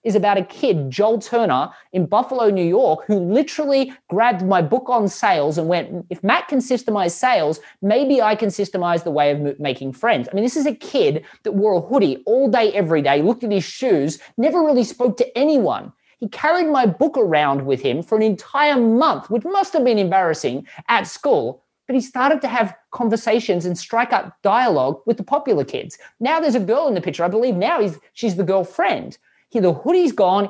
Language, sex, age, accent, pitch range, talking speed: English, male, 20-39, Australian, 175-240 Hz, 205 wpm